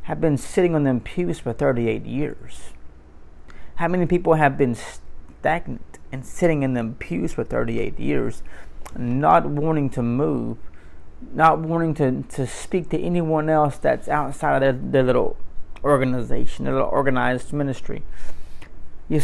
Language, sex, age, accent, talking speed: English, male, 30-49, American, 145 wpm